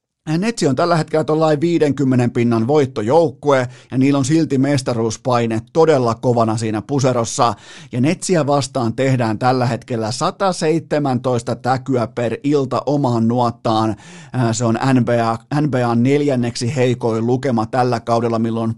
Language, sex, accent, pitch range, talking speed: Finnish, male, native, 120-155 Hz, 125 wpm